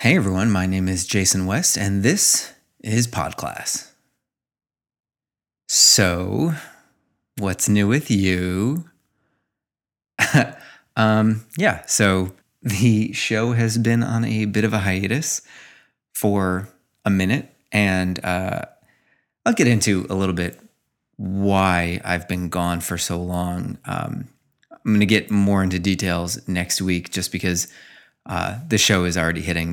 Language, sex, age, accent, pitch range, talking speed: English, male, 30-49, American, 90-110 Hz, 130 wpm